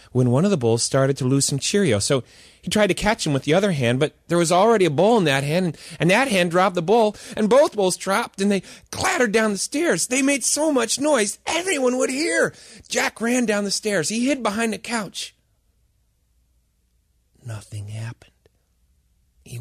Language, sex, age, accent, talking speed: English, male, 40-59, American, 200 wpm